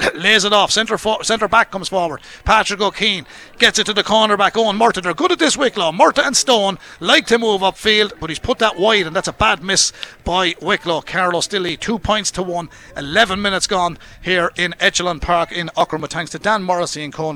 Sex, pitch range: male, 170-205 Hz